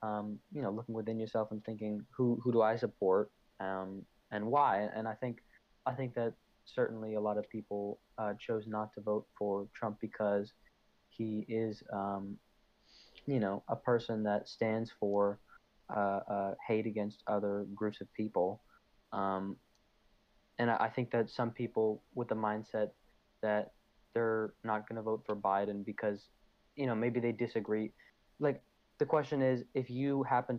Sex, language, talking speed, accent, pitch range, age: male, English, 165 wpm, American, 100-115 Hz, 20-39